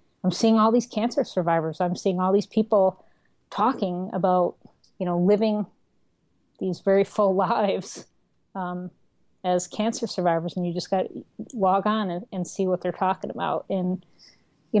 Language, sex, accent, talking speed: English, female, American, 160 wpm